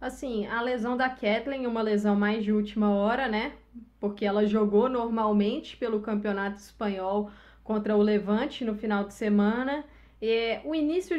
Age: 20-39